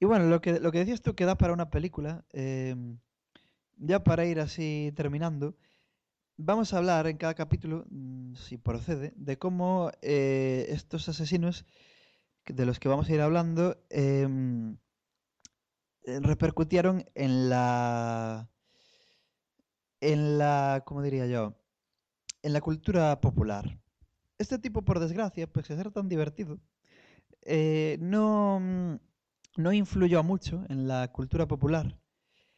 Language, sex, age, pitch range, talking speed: English, male, 20-39, 130-170 Hz, 130 wpm